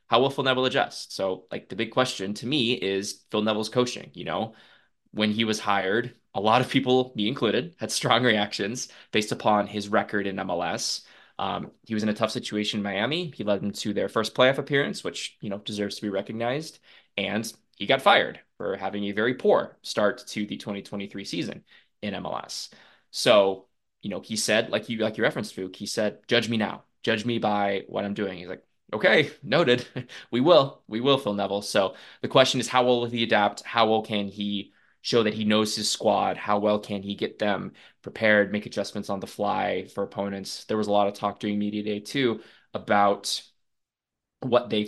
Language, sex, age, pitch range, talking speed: English, male, 20-39, 100-115 Hz, 205 wpm